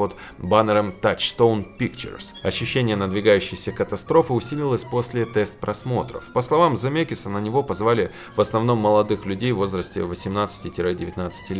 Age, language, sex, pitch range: 20-39, Russian, male, 100-135 Hz